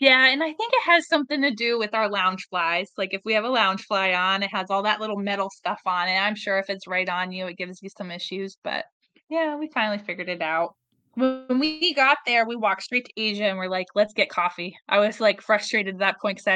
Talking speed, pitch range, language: 260 wpm, 185-230 Hz, English